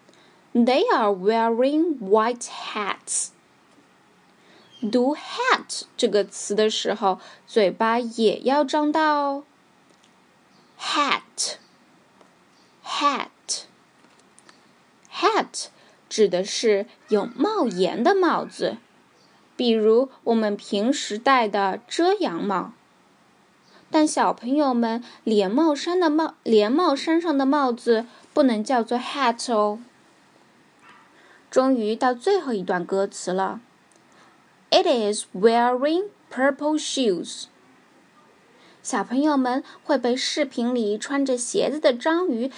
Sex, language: female, Chinese